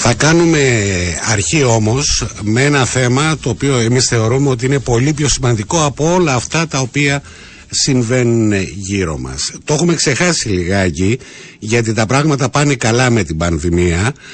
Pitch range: 110-145 Hz